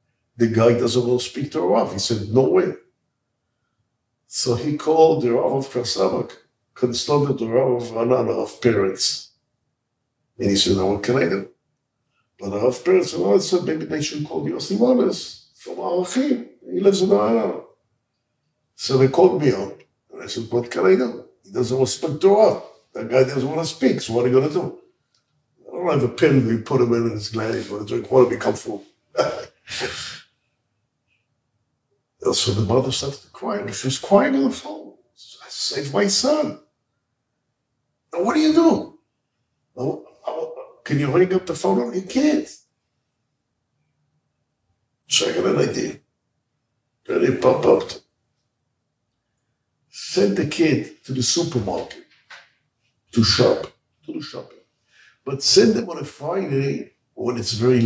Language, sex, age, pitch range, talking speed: English, male, 50-69, 120-170 Hz, 175 wpm